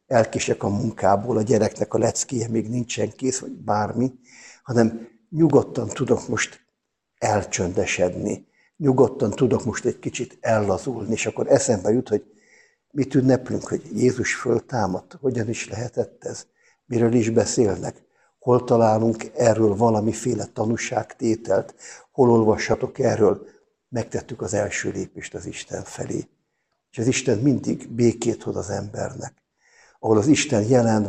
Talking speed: 130 wpm